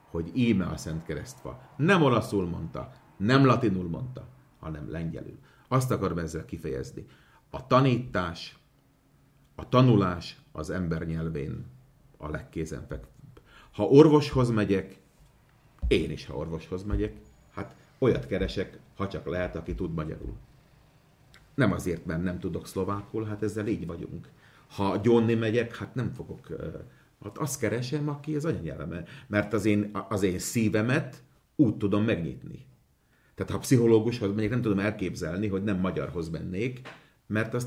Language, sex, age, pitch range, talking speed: Hungarian, male, 40-59, 95-135 Hz, 140 wpm